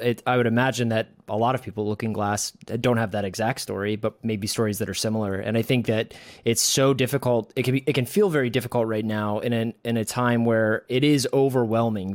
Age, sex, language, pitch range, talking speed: 20-39, male, English, 110-125 Hz, 230 wpm